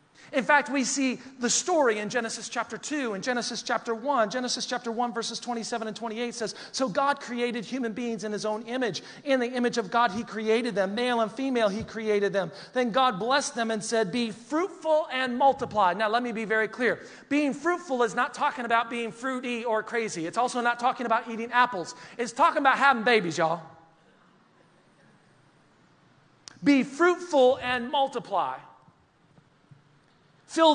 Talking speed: 175 wpm